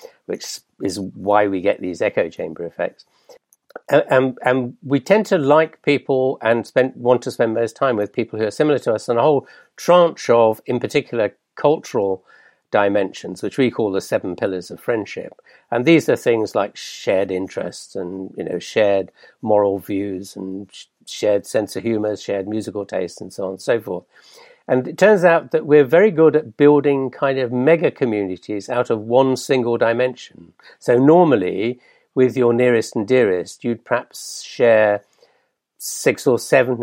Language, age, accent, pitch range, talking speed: English, 60-79, British, 105-145 Hz, 175 wpm